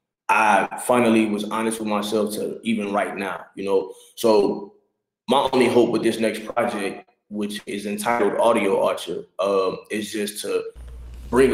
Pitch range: 95-115 Hz